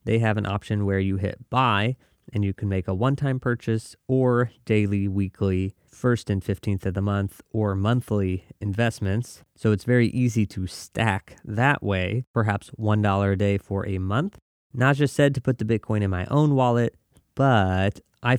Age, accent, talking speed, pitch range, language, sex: 30-49, American, 175 wpm, 100-125 Hz, English, male